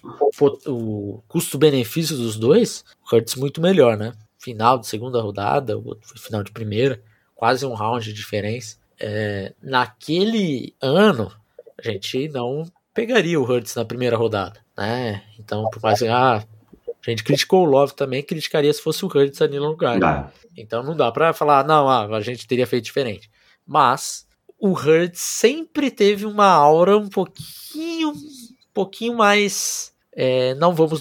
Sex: male